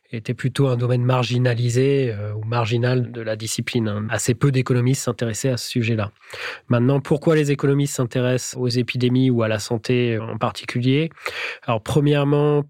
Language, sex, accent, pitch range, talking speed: French, male, French, 120-140 Hz, 155 wpm